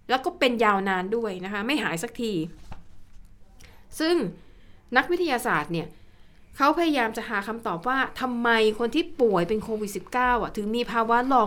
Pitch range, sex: 185-255 Hz, female